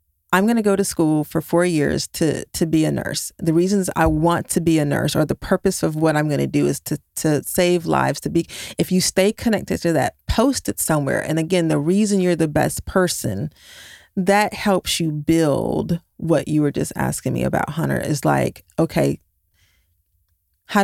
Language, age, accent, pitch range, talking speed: English, 30-49, American, 155-180 Hz, 205 wpm